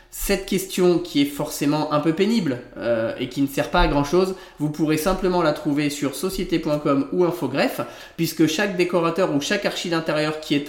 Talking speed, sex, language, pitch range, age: 195 wpm, male, French, 145-180 Hz, 20-39